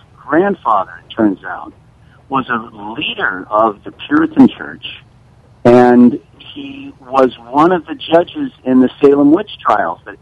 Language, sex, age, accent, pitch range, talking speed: English, male, 60-79, American, 115-180 Hz, 140 wpm